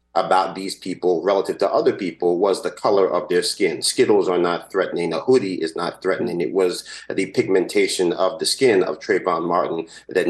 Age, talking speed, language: 40-59, 190 wpm, English